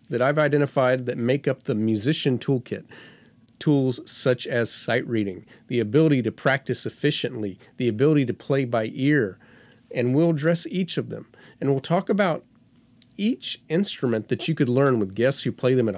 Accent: American